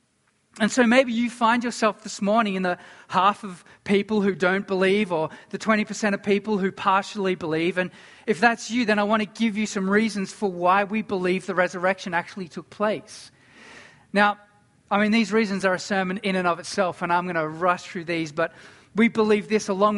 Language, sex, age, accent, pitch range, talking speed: English, male, 40-59, Australian, 190-225 Hz, 205 wpm